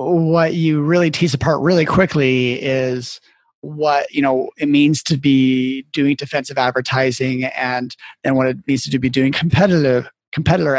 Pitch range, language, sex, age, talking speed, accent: 135-165 Hz, English, male, 30-49, 155 wpm, American